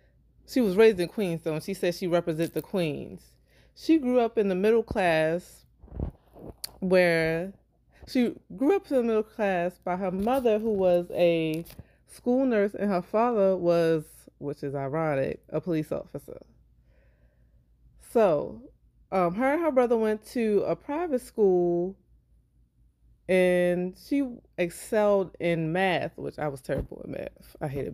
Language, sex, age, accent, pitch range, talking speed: English, female, 20-39, American, 155-210 Hz, 150 wpm